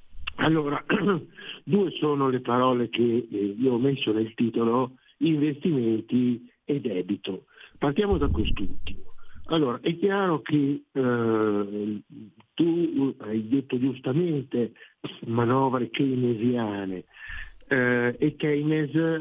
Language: Italian